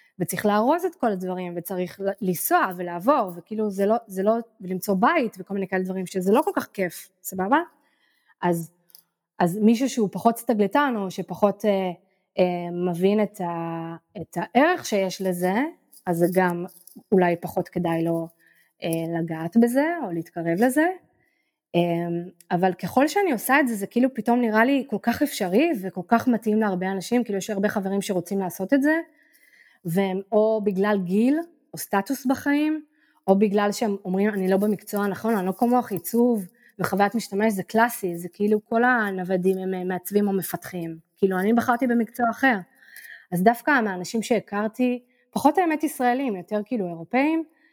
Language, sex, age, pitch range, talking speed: Hebrew, female, 20-39, 185-250 Hz, 160 wpm